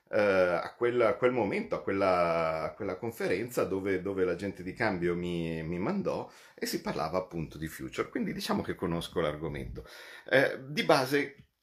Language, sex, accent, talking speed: Italian, male, native, 150 wpm